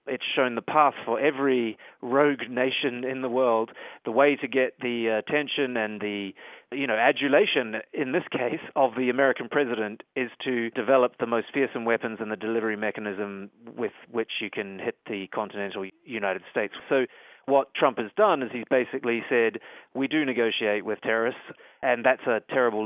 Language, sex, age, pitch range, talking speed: English, male, 30-49, 110-135 Hz, 175 wpm